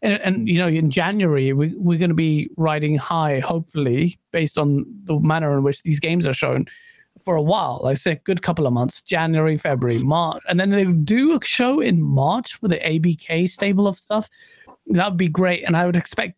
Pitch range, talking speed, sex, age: 160-230 Hz, 215 wpm, male, 30-49